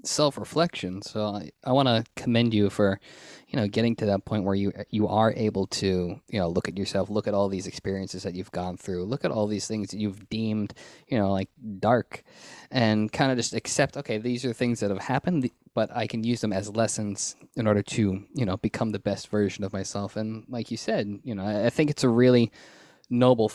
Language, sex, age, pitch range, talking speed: English, male, 20-39, 105-125 Hz, 230 wpm